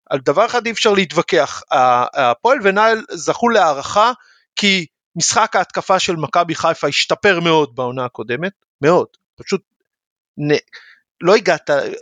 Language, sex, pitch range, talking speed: Hebrew, male, 140-185 Hz, 125 wpm